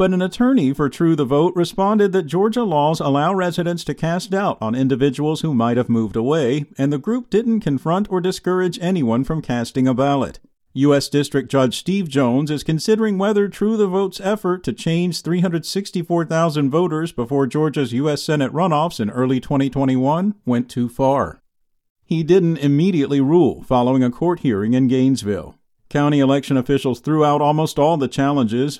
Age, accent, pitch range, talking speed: 50-69, American, 135-175 Hz, 170 wpm